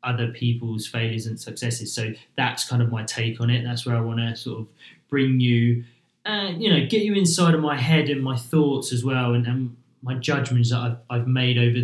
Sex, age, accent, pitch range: male, 20-39, British, 115-135 Hz